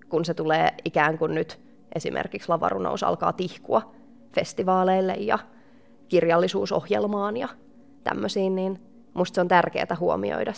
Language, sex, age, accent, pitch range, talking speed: Finnish, female, 20-39, native, 170-245 Hz, 120 wpm